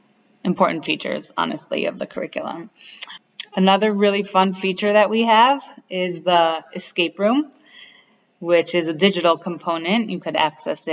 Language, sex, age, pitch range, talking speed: English, female, 30-49, 165-195 Hz, 135 wpm